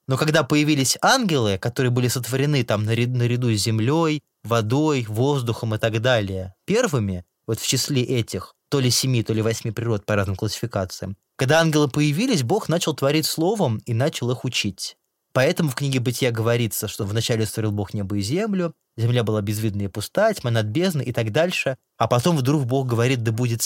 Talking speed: 185 wpm